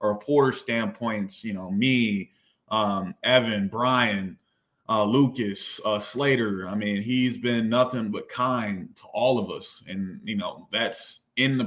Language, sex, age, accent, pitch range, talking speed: English, male, 20-39, American, 105-125 Hz, 155 wpm